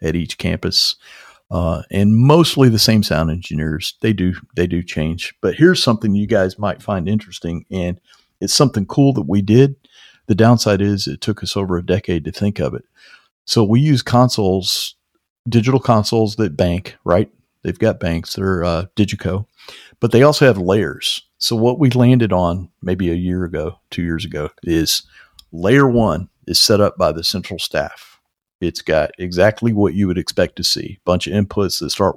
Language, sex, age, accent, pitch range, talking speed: English, male, 50-69, American, 90-110 Hz, 185 wpm